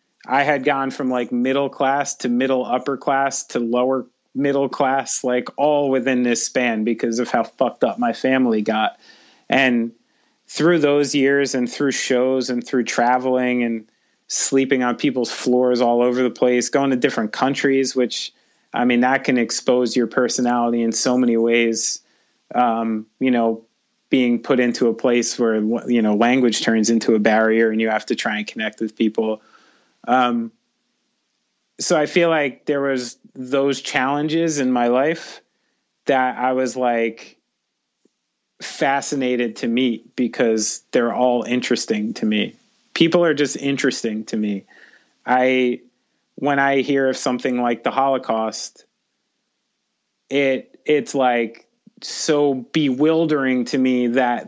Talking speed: 150 wpm